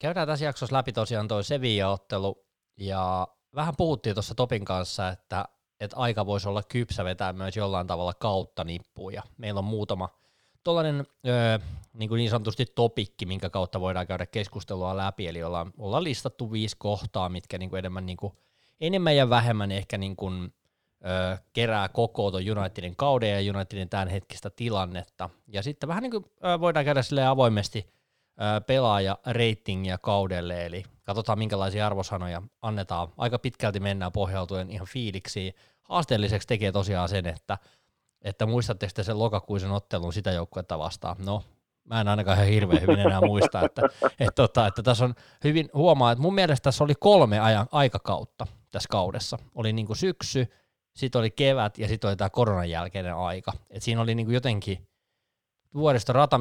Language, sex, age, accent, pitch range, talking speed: Finnish, male, 20-39, native, 95-120 Hz, 155 wpm